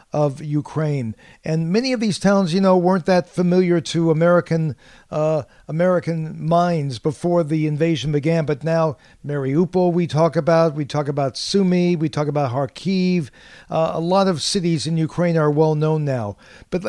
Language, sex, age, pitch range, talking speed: English, male, 50-69, 150-175 Hz, 165 wpm